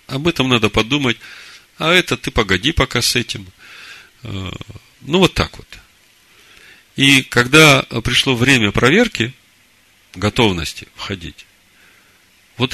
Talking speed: 110 wpm